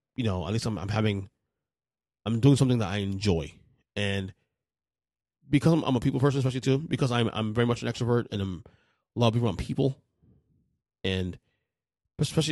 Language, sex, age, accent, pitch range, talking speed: English, male, 20-39, American, 100-135 Hz, 180 wpm